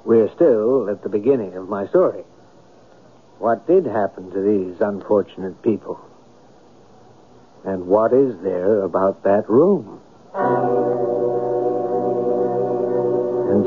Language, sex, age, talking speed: English, male, 60-79, 100 wpm